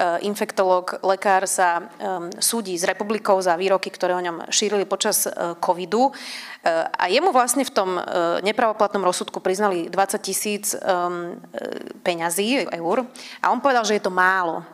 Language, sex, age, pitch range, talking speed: Slovak, female, 30-49, 180-210 Hz, 135 wpm